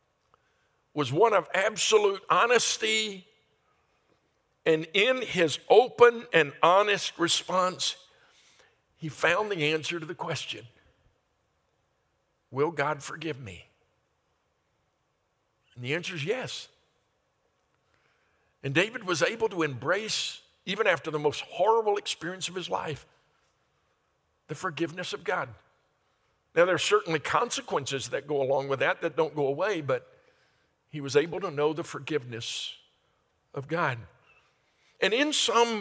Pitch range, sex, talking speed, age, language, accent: 145-215 Hz, male, 125 wpm, 60-79, English, American